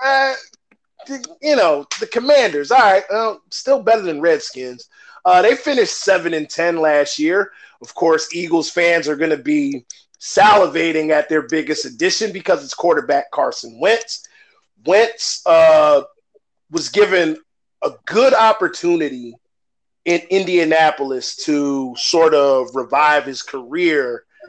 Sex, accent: male, American